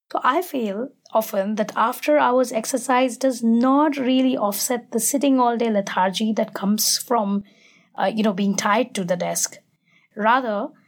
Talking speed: 160 wpm